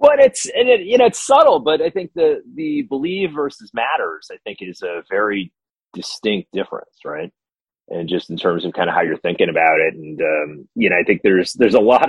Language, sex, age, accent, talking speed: English, male, 30-49, American, 230 wpm